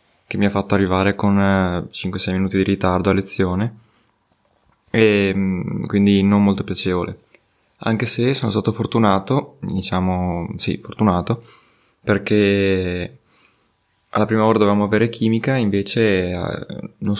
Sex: male